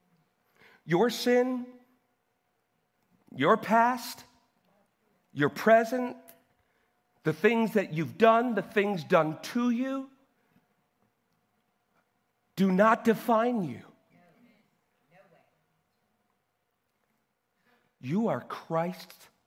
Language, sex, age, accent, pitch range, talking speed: English, male, 50-69, American, 195-245 Hz, 70 wpm